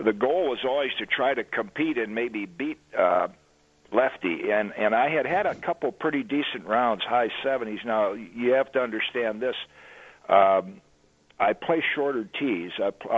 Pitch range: 105-130 Hz